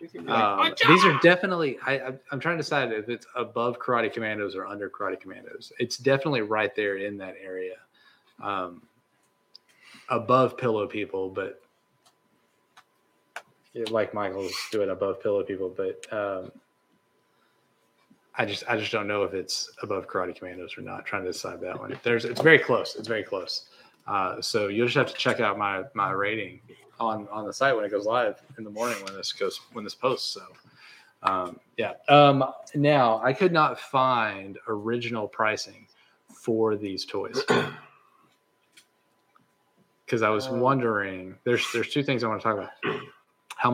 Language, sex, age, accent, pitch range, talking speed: English, male, 20-39, American, 110-180 Hz, 165 wpm